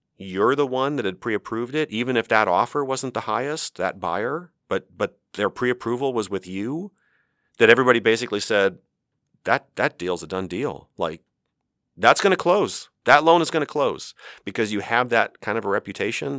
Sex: male